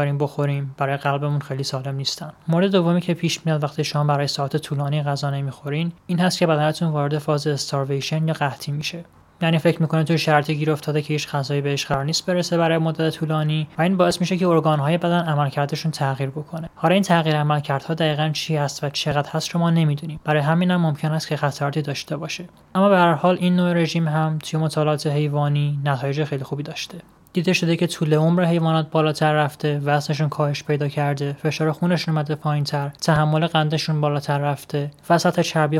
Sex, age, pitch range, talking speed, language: male, 20-39, 145-165 Hz, 190 wpm, Persian